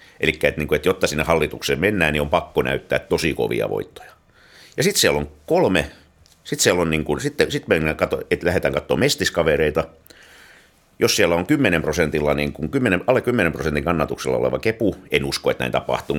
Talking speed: 165 wpm